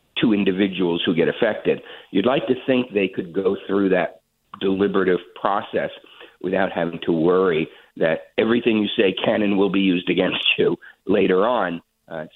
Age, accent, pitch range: 50-69, American, 95-115 Hz